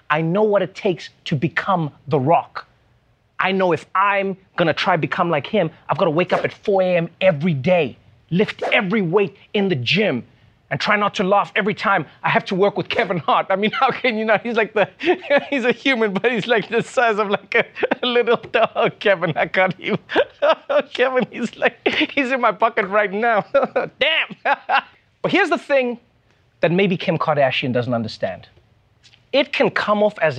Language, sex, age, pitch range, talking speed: English, male, 30-49, 175-255 Hz, 200 wpm